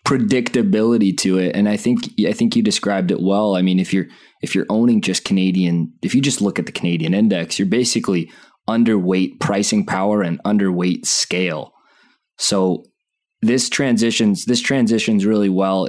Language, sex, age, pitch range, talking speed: English, male, 20-39, 95-115 Hz, 165 wpm